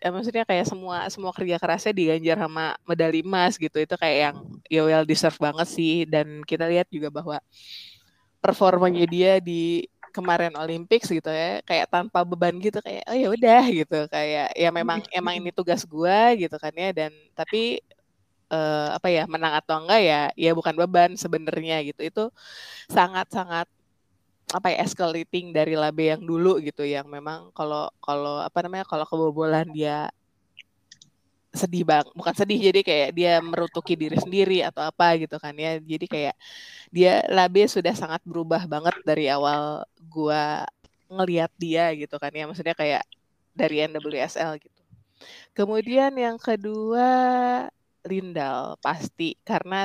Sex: female